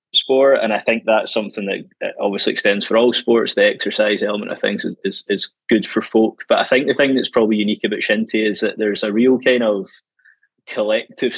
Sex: male